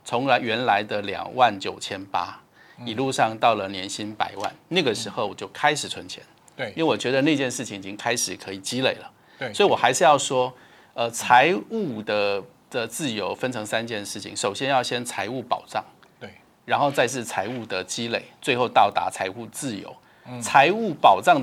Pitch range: 105-140 Hz